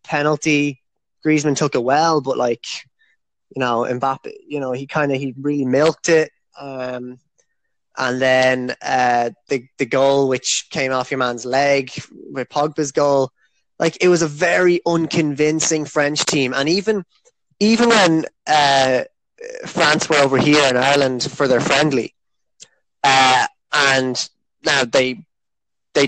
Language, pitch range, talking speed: English, 130-175 Hz, 145 wpm